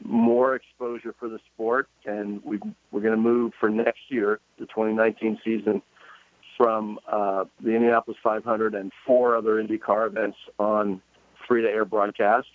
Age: 50-69